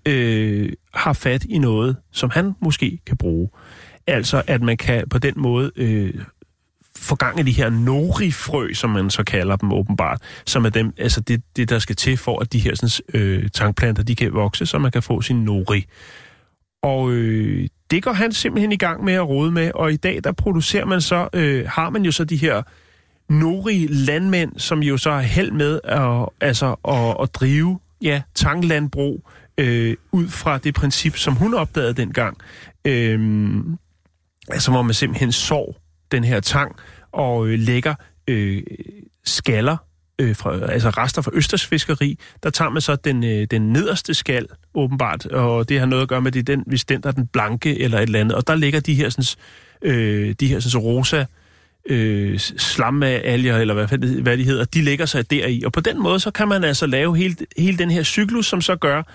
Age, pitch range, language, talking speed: 30-49, 110-155 Hz, Danish, 195 wpm